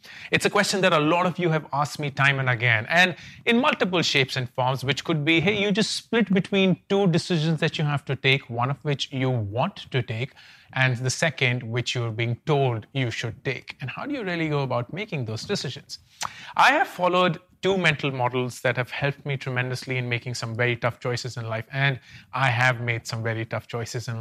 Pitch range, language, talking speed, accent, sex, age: 125-170 Hz, English, 225 wpm, Indian, male, 30-49